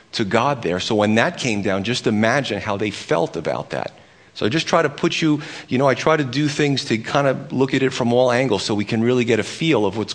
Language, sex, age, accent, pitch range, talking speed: English, male, 40-59, American, 110-140 Hz, 280 wpm